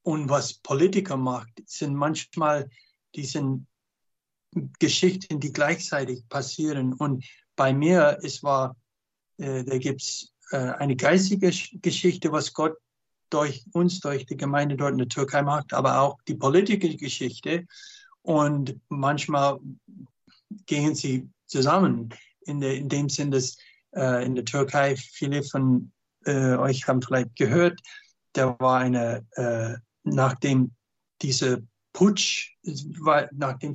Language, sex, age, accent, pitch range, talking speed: German, male, 60-79, German, 130-155 Hz, 125 wpm